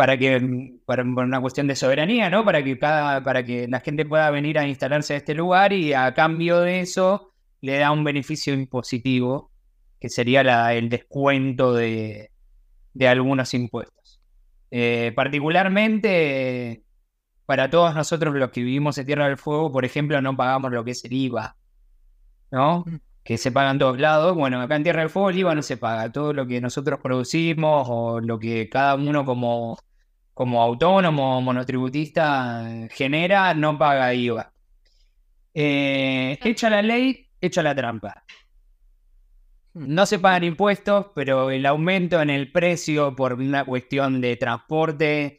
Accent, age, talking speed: Argentinian, 20-39, 160 wpm